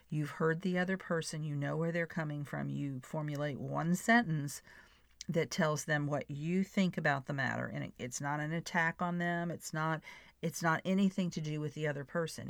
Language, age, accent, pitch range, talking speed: English, 50-69, American, 145-170 Hz, 200 wpm